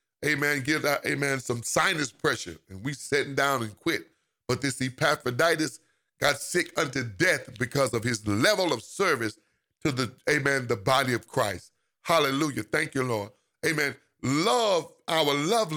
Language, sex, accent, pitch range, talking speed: English, male, American, 130-165 Hz, 155 wpm